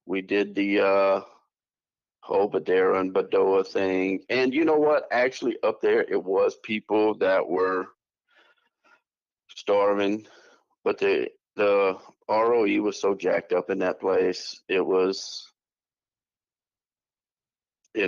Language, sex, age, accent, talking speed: English, male, 50-69, American, 120 wpm